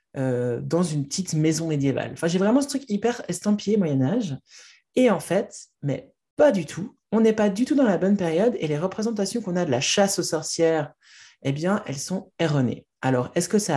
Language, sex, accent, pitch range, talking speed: French, male, French, 145-200 Hz, 215 wpm